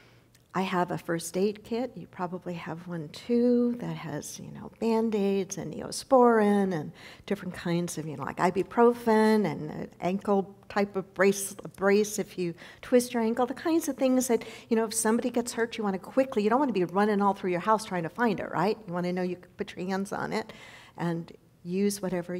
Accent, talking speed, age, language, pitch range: American, 220 wpm, 50-69, English, 195-245 Hz